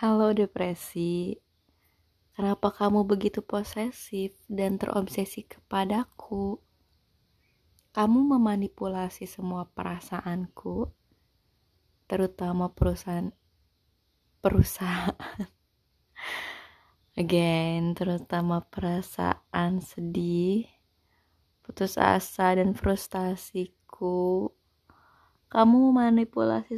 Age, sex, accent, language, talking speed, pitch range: 20-39, female, native, Indonesian, 60 wpm, 165-200 Hz